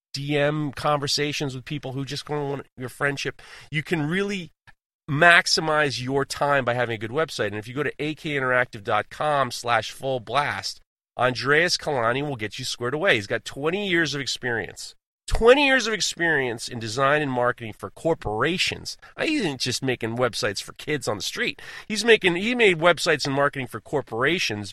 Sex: male